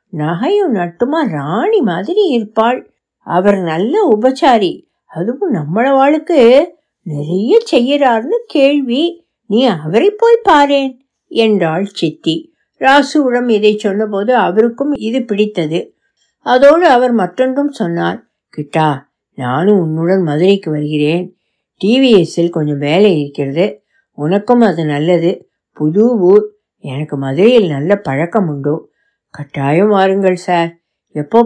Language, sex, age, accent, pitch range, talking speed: Tamil, female, 60-79, native, 165-255 Hz, 100 wpm